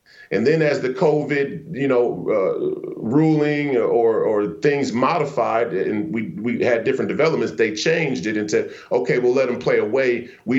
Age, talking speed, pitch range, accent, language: 40-59, 170 wpm, 125-170 Hz, American, English